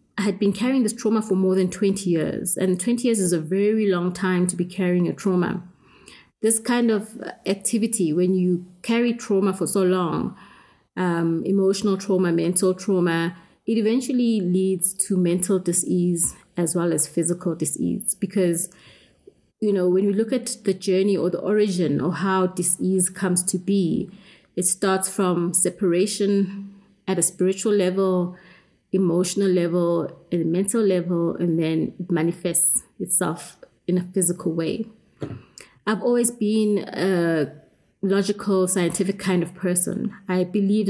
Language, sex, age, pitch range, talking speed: English, female, 30-49, 175-200 Hz, 150 wpm